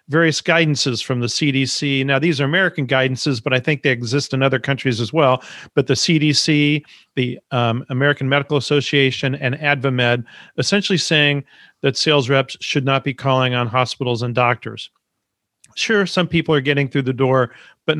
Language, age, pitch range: English, 40-59, 130-155 Hz